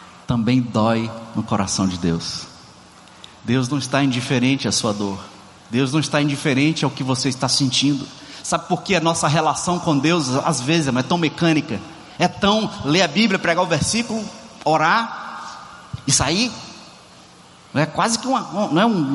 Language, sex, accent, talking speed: Portuguese, male, Brazilian, 170 wpm